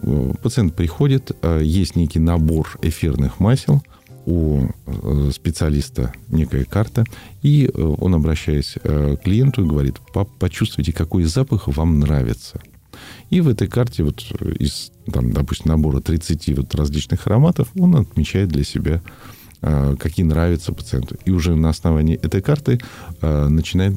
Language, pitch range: Russian, 75-105 Hz